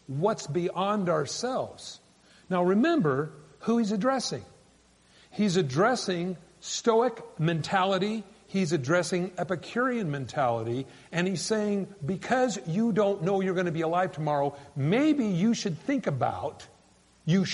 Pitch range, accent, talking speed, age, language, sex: 145-215 Hz, American, 120 wpm, 50-69, English, male